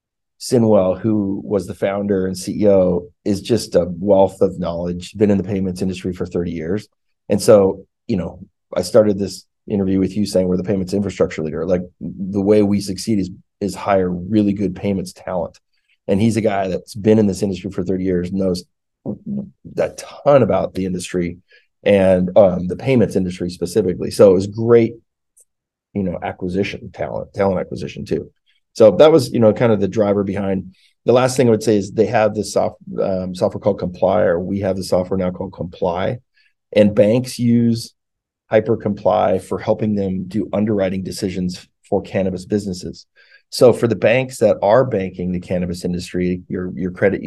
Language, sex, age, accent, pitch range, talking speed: English, male, 30-49, American, 90-105 Hz, 180 wpm